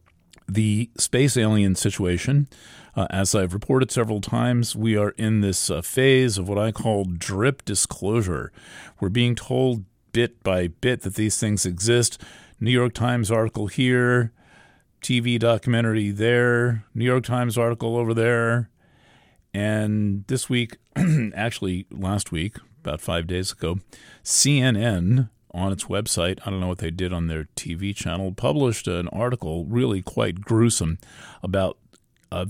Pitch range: 95-120 Hz